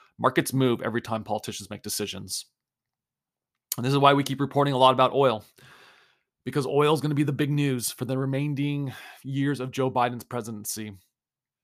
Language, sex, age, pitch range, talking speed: English, male, 30-49, 110-135 Hz, 180 wpm